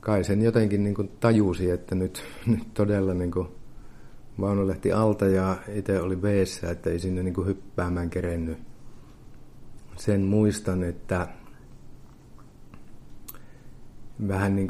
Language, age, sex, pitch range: Finnish, 50-69, male, 90-115 Hz